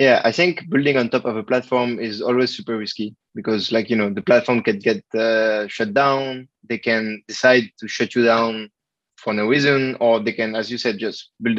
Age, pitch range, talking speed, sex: 20-39, 110-125 Hz, 215 wpm, male